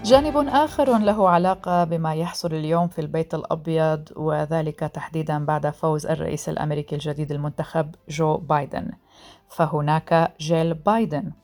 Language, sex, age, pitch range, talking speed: Arabic, female, 40-59, 150-180 Hz, 120 wpm